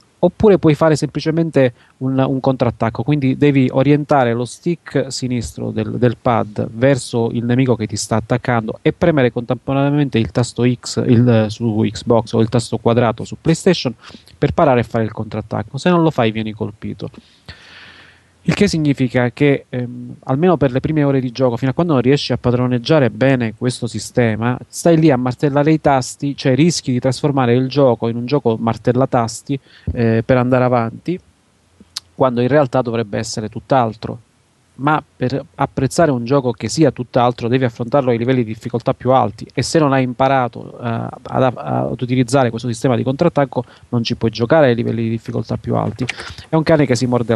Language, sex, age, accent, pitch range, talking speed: Italian, male, 30-49, native, 115-140 Hz, 180 wpm